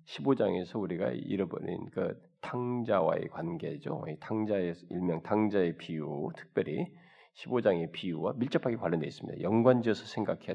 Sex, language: male, Korean